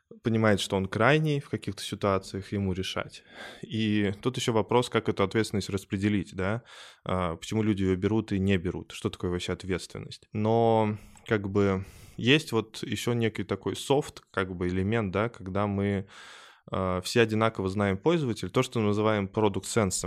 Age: 20-39